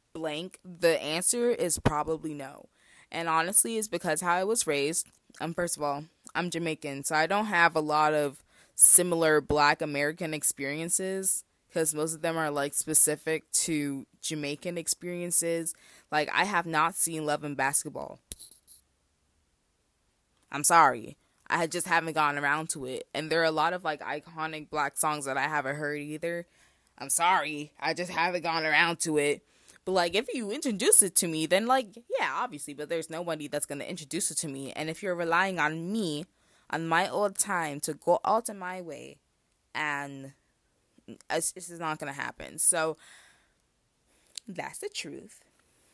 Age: 20-39